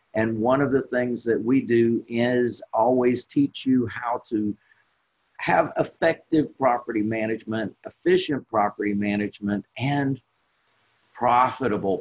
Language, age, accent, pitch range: English, 50-69, American, 110-140 Hz